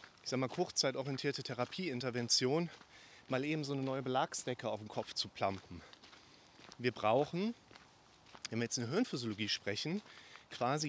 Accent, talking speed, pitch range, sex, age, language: German, 145 wpm, 125-165 Hz, male, 30-49, German